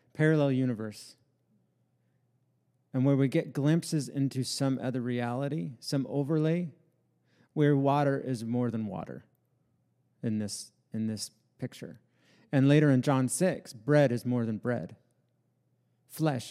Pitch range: 125-150 Hz